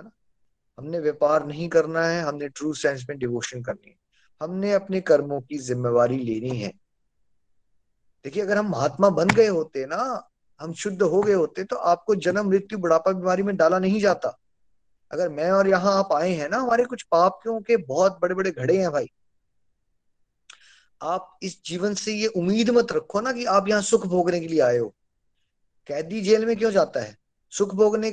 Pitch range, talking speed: 145-195 Hz, 175 wpm